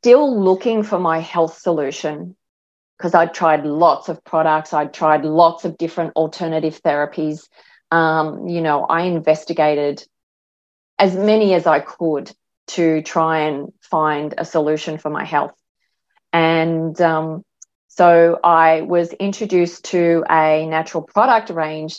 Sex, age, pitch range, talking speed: female, 30-49, 155-180 Hz, 135 wpm